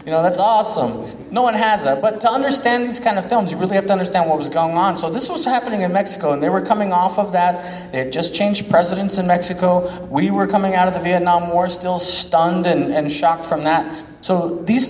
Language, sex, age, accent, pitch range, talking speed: English, male, 30-49, American, 140-185 Hz, 245 wpm